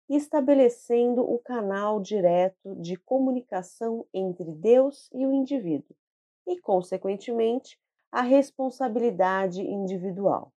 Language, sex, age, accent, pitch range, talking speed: Portuguese, female, 30-49, Brazilian, 190-260 Hz, 90 wpm